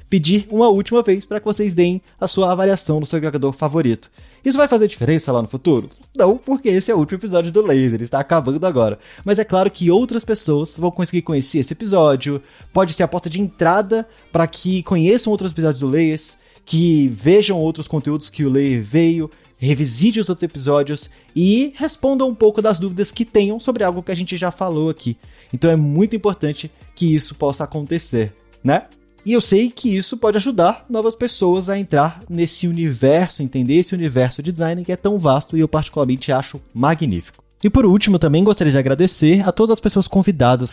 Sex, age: male, 20-39